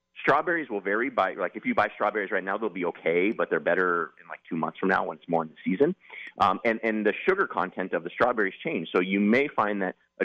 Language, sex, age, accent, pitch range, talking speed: English, male, 30-49, American, 90-115 Hz, 265 wpm